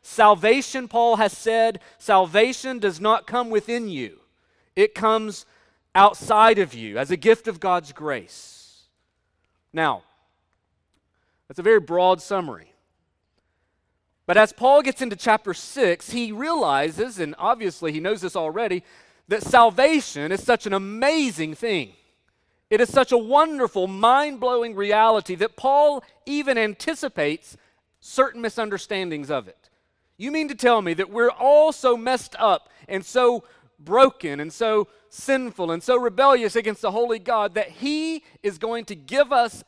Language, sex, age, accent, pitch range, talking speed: English, male, 40-59, American, 185-255 Hz, 145 wpm